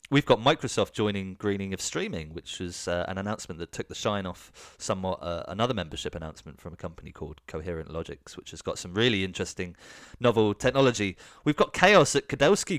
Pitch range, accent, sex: 90-110 Hz, British, male